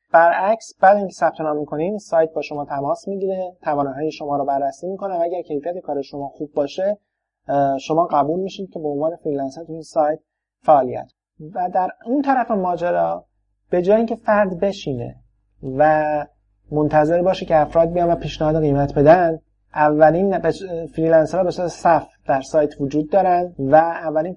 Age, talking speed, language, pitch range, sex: 30-49, 155 wpm, Persian, 135-175 Hz, male